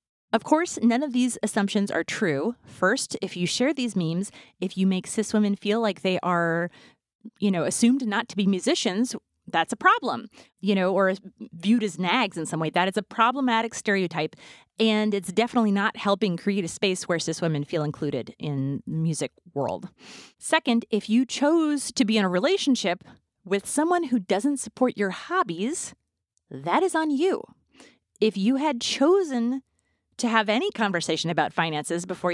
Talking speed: 175 wpm